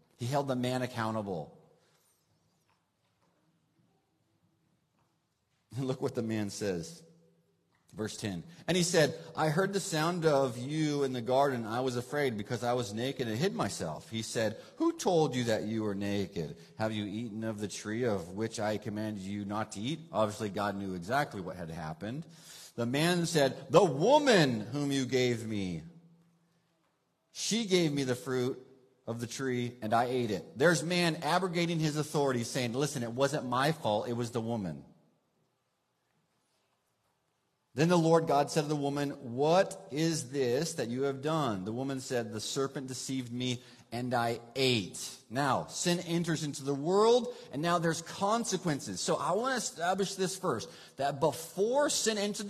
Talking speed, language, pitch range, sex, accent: 170 wpm, English, 115-165 Hz, male, American